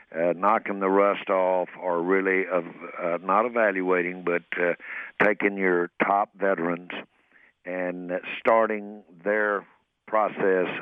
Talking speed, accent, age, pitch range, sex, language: 115 wpm, American, 60-79, 90-100 Hz, male, English